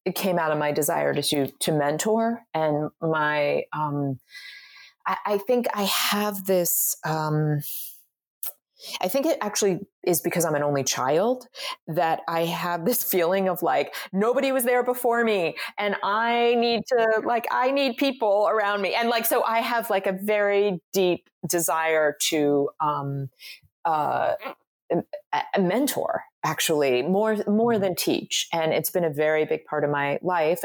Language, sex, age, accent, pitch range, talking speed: English, female, 30-49, American, 150-205 Hz, 160 wpm